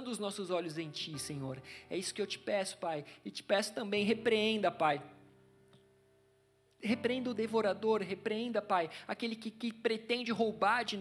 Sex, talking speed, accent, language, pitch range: male, 165 wpm, Brazilian, Portuguese, 190-275 Hz